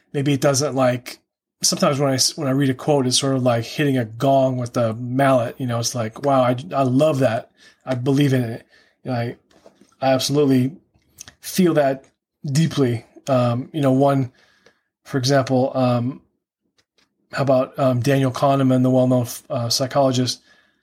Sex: male